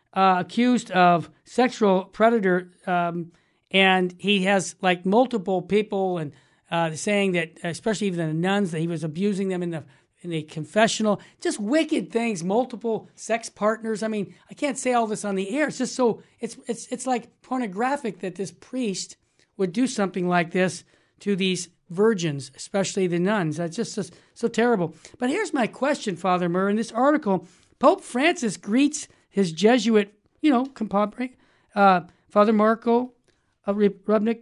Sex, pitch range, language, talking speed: male, 180-230 Hz, English, 165 wpm